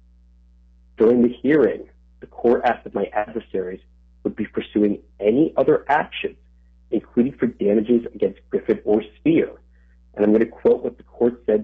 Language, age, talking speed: English, 40-59, 160 wpm